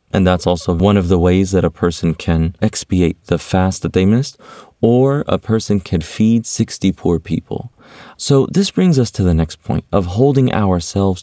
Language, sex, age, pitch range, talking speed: English, male, 30-49, 85-105 Hz, 190 wpm